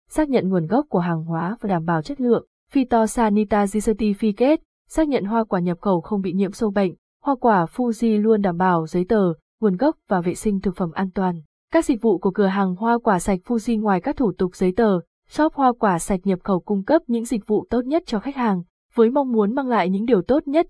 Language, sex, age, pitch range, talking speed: Vietnamese, female, 20-39, 190-235 Hz, 245 wpm